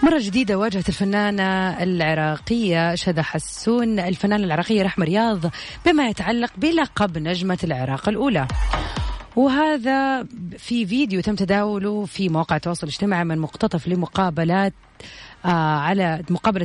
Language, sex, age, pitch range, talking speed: Arabic, female, 30-49, 175-230 Hz, 110 wpm